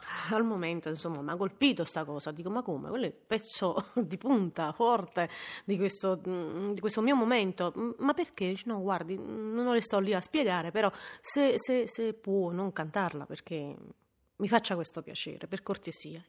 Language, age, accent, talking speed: Italian, 30-49, native, 175 wpm